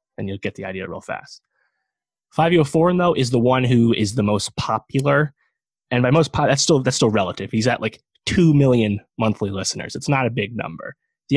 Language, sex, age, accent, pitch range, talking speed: English, male, 20-39, American, 100-135 Hz, 205 wpm